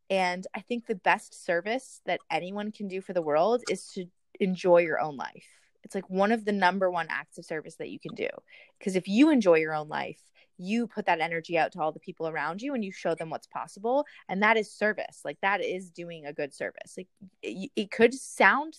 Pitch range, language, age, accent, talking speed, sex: 175-225 Hz, English, 20-39, American, 235 wpm, female